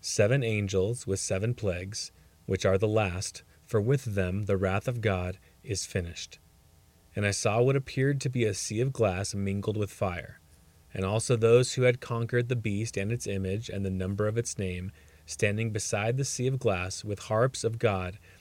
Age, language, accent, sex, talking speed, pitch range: 30-49, English, American, male, 190 wpm, 95-115 Hz